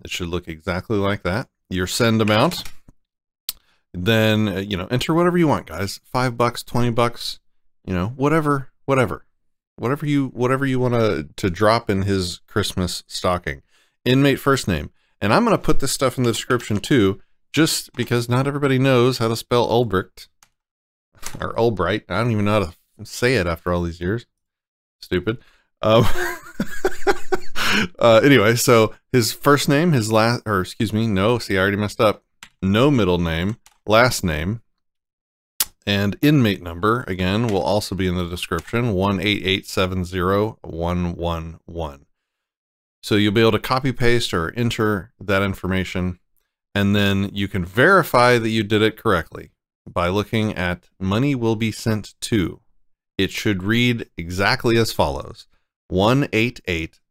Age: 40-59